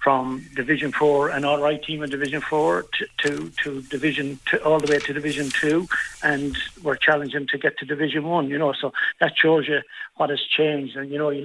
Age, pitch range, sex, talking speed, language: 60-79, 135-150 Hz, male, 210 wpm, English